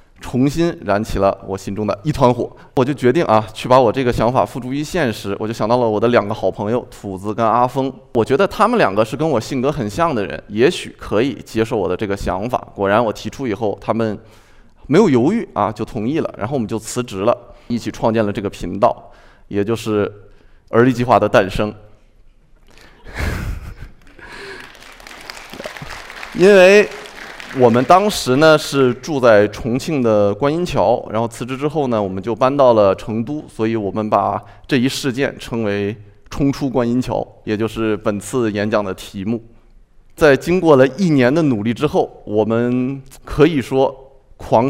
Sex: male